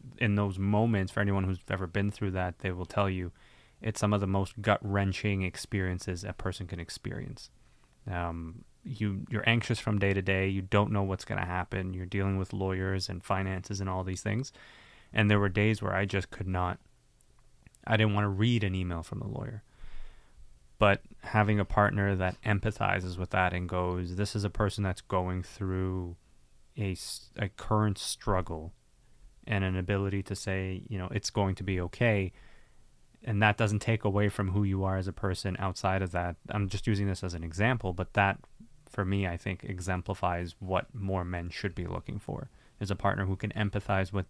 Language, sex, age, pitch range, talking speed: English, male, 20-39, 90-105 Hz, 200 wpm